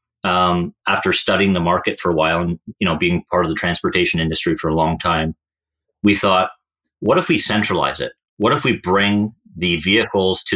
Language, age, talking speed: English, 30-49, 200 wpm